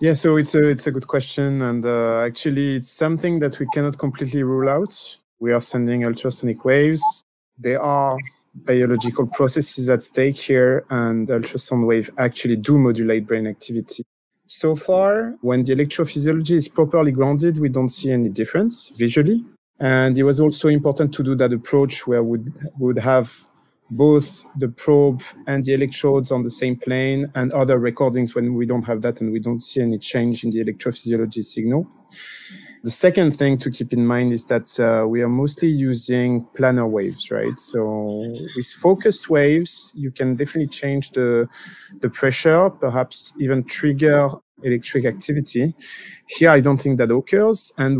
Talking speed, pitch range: 165 wpm, 120-150 Hz